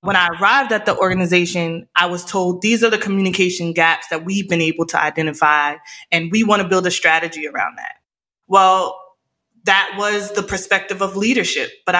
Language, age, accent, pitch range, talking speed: English, 20-39, American, 175-210 Hz, 185 wpm